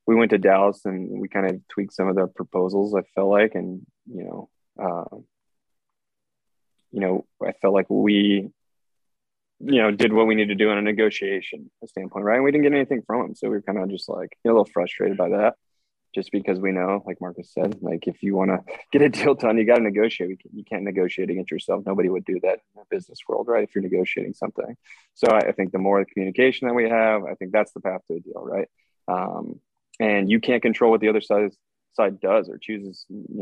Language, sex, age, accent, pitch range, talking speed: English, male, 20-39, American, 95-115 Hz, 235 wpm